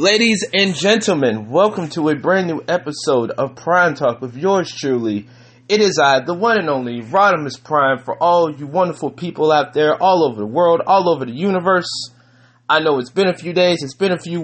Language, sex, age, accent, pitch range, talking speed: English, male, 30-49, American, 130-180 Hz, 210 wpm